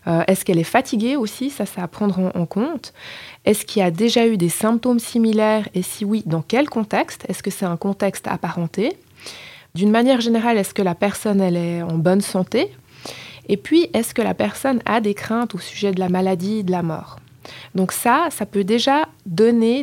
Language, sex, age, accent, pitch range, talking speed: French, female, 20-39, French, 185-230 Hz, 205 wpm